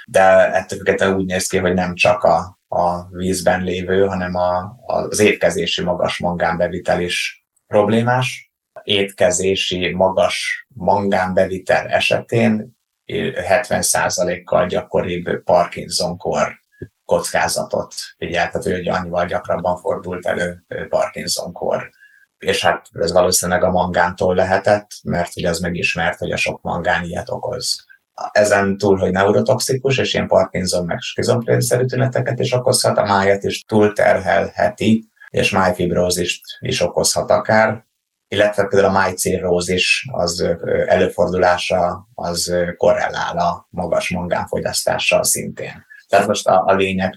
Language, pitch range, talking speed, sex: Hungarian, 90-105 Hz, 115 wpm, male